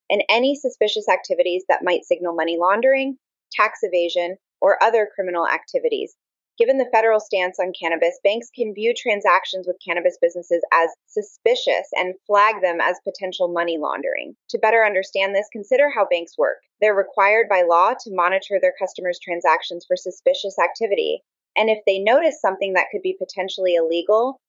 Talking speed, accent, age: 165 wpm, American, 20-39